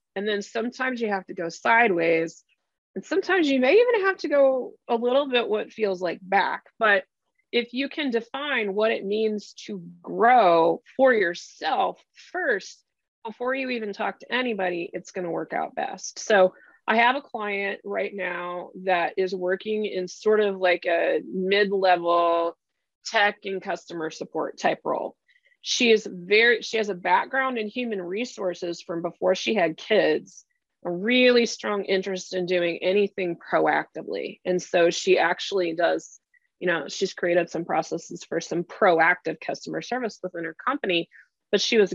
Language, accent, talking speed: English, American, 165 wpm